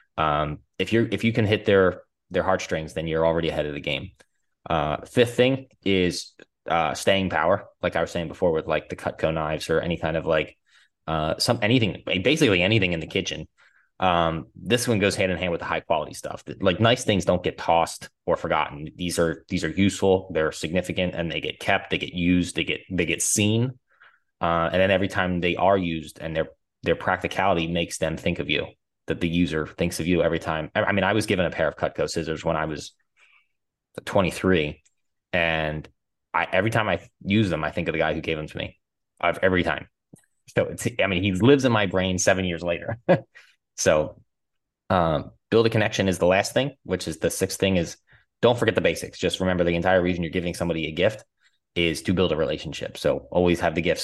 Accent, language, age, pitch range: American, English, 20-39, 85-100 Hz